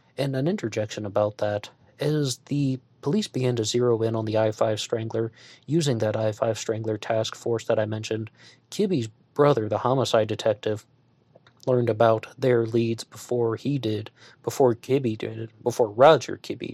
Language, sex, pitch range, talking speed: English, male, 110-130 Hz, 155 wpm